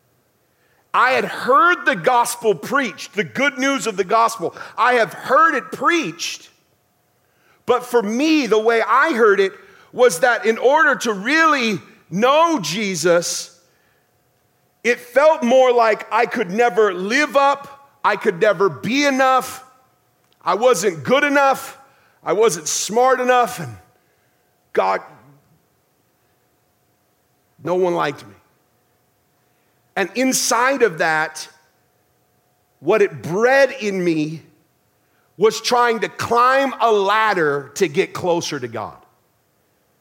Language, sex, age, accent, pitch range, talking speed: English, male, 50-69, American, 195-270 Hz, 120 wpm